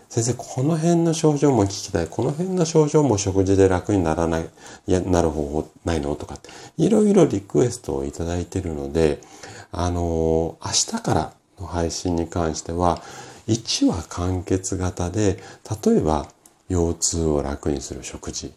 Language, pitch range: Japanese, 75-100 Hz